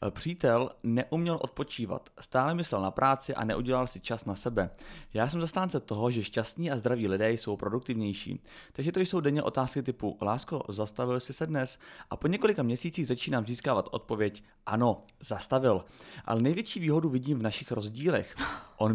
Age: 30-49